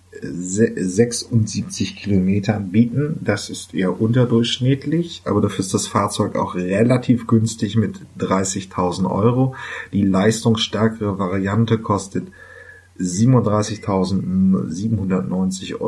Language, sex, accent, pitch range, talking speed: German, male, German, 95-125 Hz, 85 wpm